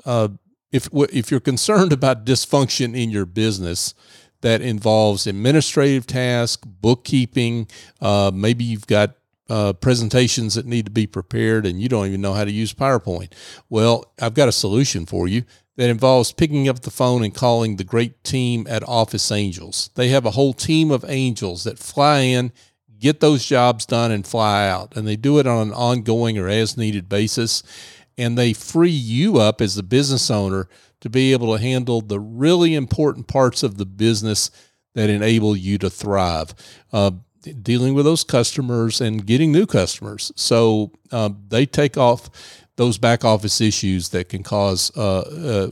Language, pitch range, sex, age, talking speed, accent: English, 105-130 Hz, male, 50-69, 175 wpm, American